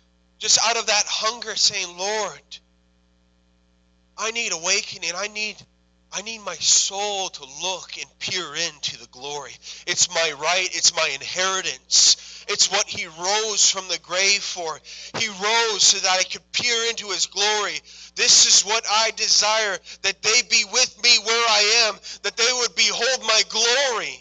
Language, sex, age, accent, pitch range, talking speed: English, male, 30-49, American, 170-265 Hz, 165 wpm